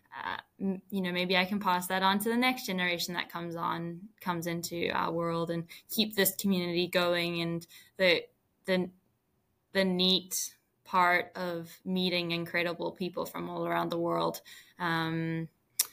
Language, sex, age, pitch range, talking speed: English, female, 10-29, 170-190 Hz, 155 wpm